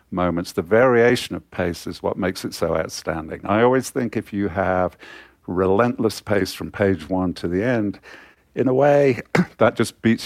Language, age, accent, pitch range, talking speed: English, 50-69, British, 85-105 Hz, 180 wpm